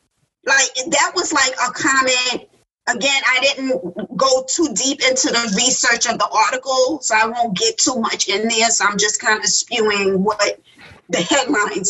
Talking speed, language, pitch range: 175 wpm, English, 220-300 Hz